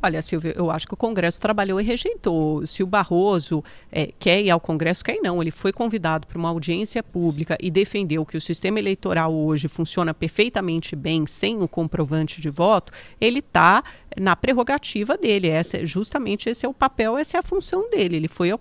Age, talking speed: 40-59, 190 wpm